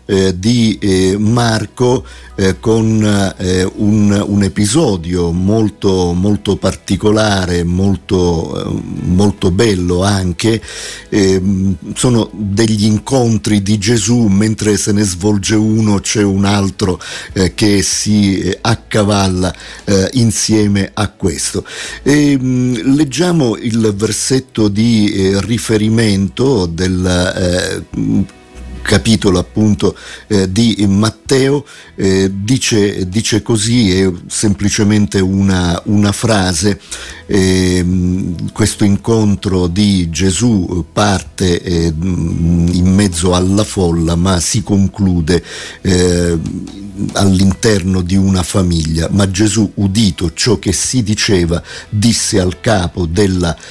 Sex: male